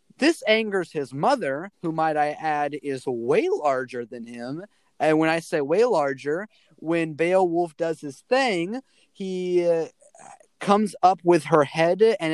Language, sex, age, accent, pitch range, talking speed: English, male, 30-49, American, 140-205 Hz, 155 wpm